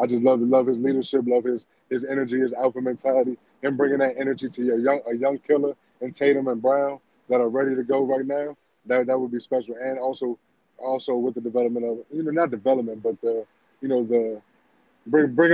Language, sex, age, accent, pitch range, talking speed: English, male, 20-39, American, 125-140 Hz, 220 wpm